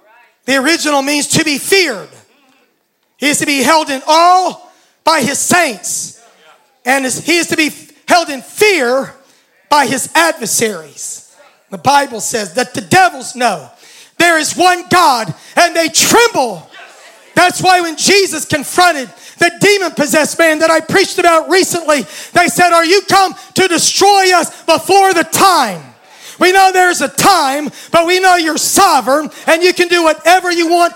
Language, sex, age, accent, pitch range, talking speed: English, male, 40-59, American, 275-360 Hz, 160 wpm